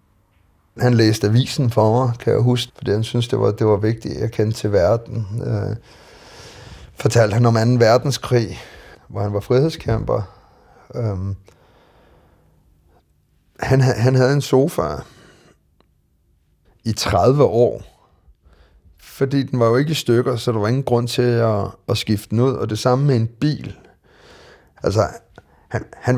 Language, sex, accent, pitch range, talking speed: Danish, male, native, 95-125 Hz, 150 wpm